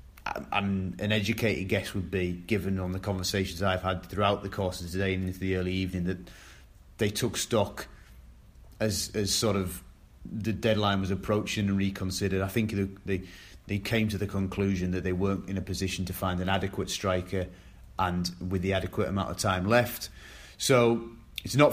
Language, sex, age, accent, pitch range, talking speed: English, male, 30-49, British, 95-110 Hz, 180 wpm